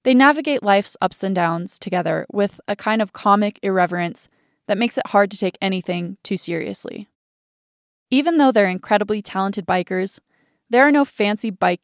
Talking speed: 165 wpm